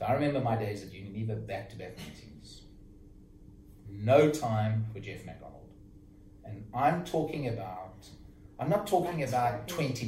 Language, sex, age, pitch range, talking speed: English, male, 40-59, 100-120 Hz, 135 wpm